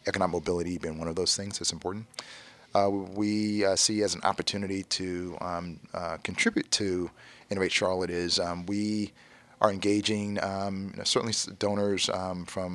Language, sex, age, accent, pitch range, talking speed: English, male, 30-49, American, 90-105 Hz, 165 wpm